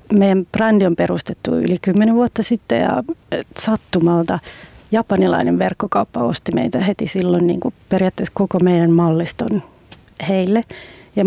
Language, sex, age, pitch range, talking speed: Finnish, female, 30-49, 180-215 Hz, 130 wpm